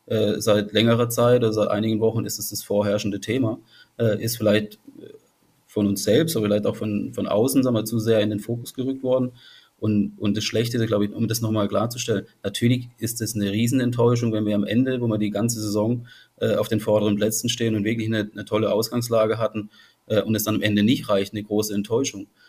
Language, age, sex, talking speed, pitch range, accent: German, 30-49, male, 210 wpm, 105-115 Hz, German